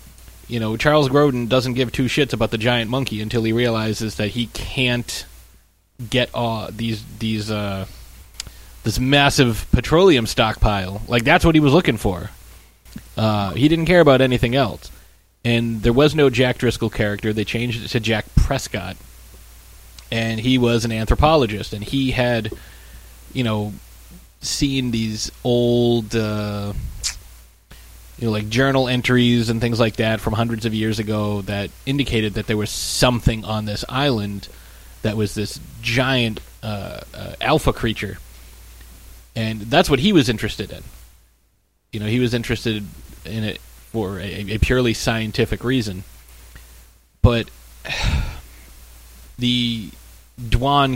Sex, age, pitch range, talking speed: male, 20-39, 95-125 Hz, 145 wpm